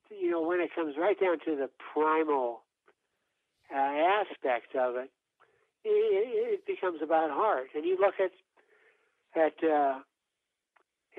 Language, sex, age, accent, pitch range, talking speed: English, male, 60-79, American, 150-215 Hz, 135 wpm